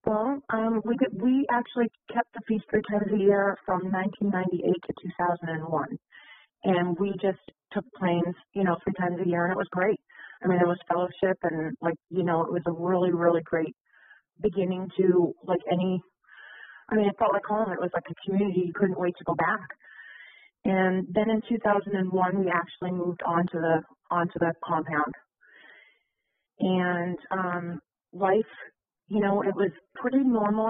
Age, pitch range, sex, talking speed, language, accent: 30-49, 170-195 Hz, female, 180 wpm, English, American